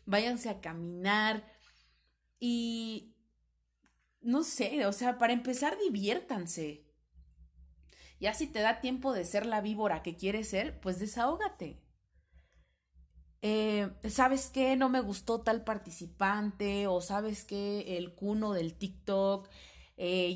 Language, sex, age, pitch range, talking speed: Spanish, female, 30-49, 170-215 Hz, 120 wpm